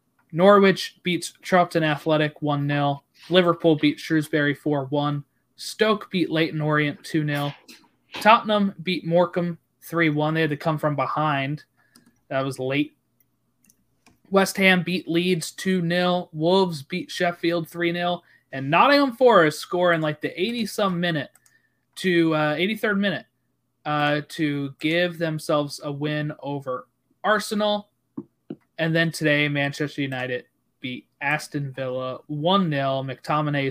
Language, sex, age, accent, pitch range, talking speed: English, male, 20-39, American, 145-185 Hz, 115 wpm